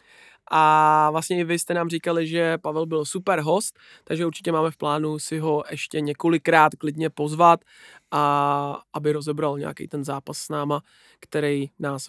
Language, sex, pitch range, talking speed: Czech, male, 150-180 Hz, 165 wpm